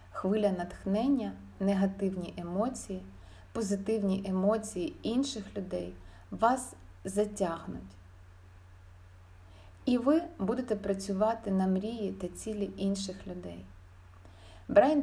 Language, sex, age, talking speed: Ukrainian, female, 30-49, 85 wpm